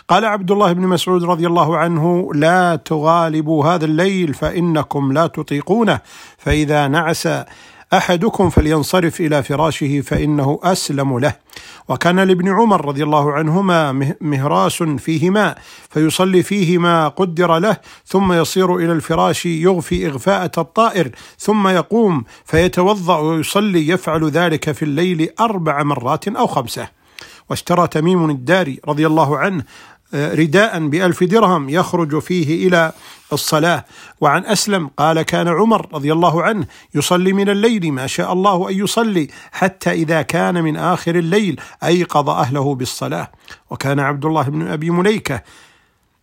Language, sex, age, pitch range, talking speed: Arabic, male, 50-69, 150-180 Hz, 130 wpm